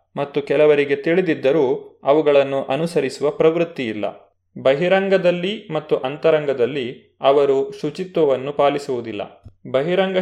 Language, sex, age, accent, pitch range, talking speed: Kannada, male, 30-49, native, 130-165 Hz, 75 wpm